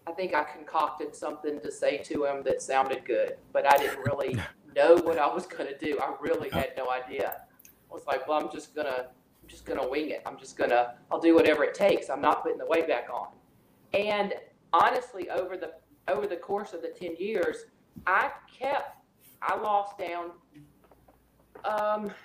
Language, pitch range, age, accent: English, 150-200 Hz, 40-59, American